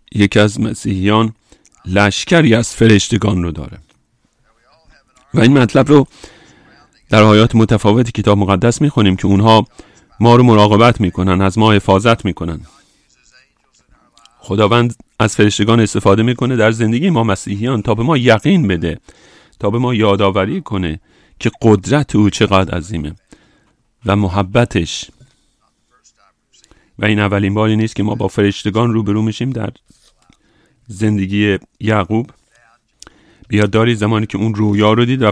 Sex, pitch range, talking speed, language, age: male, 100-120 Hz, 130 wpm, English, 40-59